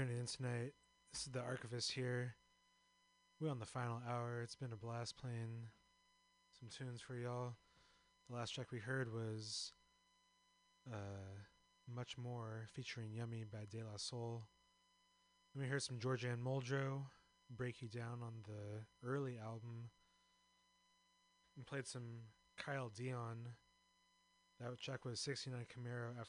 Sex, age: male, 20-39